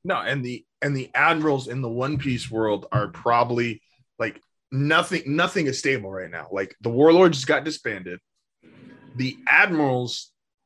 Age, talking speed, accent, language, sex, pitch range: 20-39, 150 wpm, American, English, male, 115-145 Hz